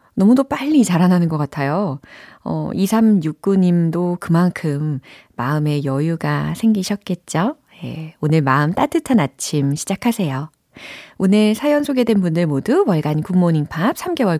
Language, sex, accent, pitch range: Korean, female, native, 155-250 Hz